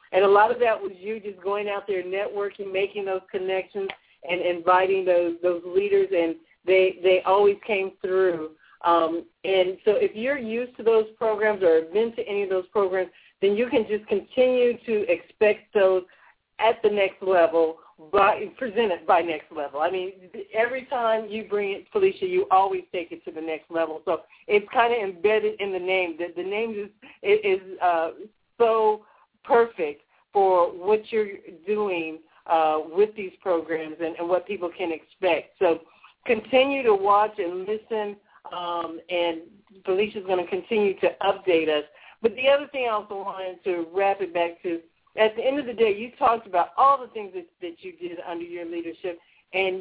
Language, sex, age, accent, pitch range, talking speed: English, female, 50-69, American, 175-220 Hz, 185 wpm